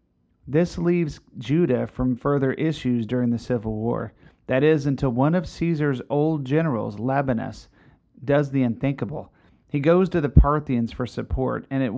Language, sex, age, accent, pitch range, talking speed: English, male, 40-59, American, 115-145 Hz, 155 wpm